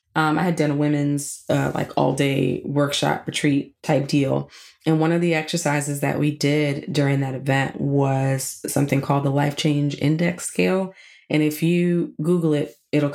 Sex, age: female, 20-39